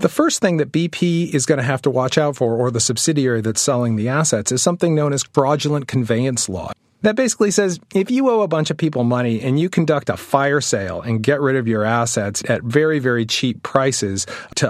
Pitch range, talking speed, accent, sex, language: 120-155 Hz, 230 wpm, American, male, English